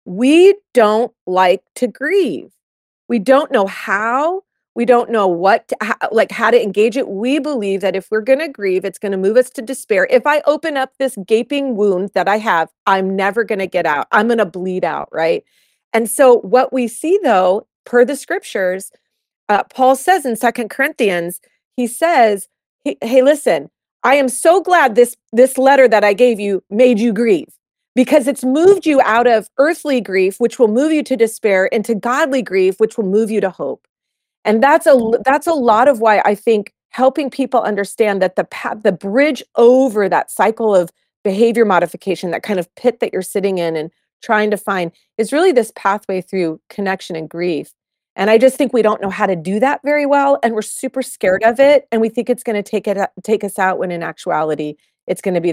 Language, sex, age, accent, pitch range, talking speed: English, female, 40-59, American, 195-265 Hz, 205 wpm